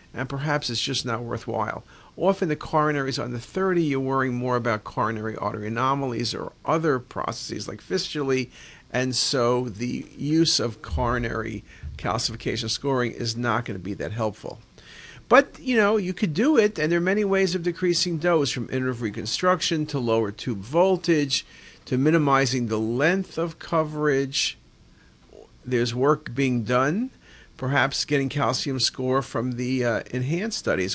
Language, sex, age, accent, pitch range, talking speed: English, male, 50-69, American, 115-155 Hz, 155 wpm